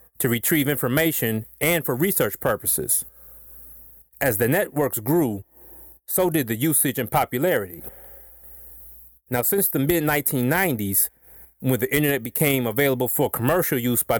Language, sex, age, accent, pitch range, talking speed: English, male, 30-49, American, 95-150 Hz, 130 wpm